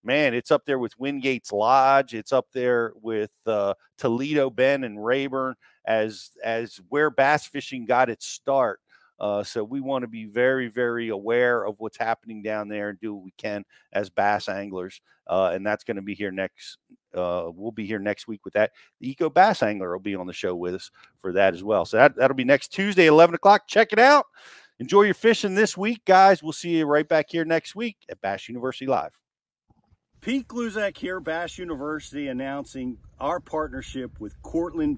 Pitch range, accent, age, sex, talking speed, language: 110-160 Hz, American, 50-69, male, 200 wpm, English